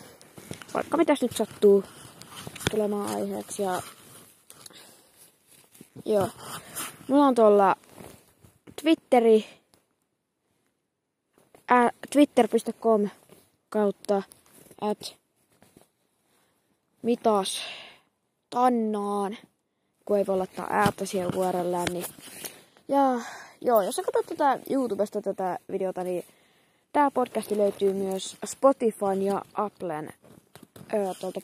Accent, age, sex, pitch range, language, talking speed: native, 20-39, female, 195-235 Hz, Finnish, 70 wpm